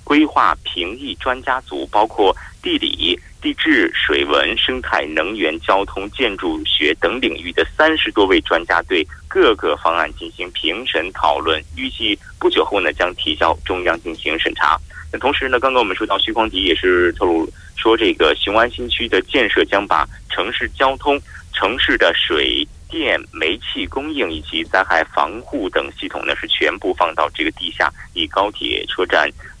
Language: Korean